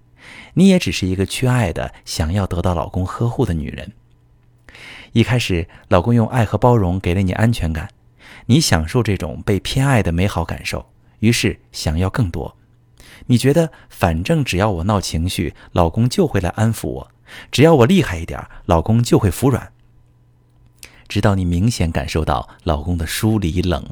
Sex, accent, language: male, native, Chinese